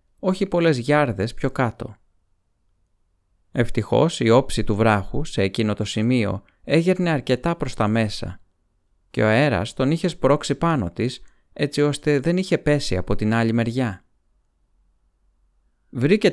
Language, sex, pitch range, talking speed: Greek, male, 100-140 Hz, 135 wpm